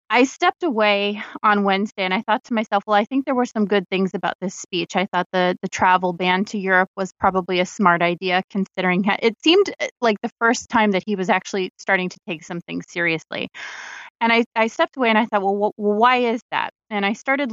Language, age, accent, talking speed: English, 20-39, American, 220 wpm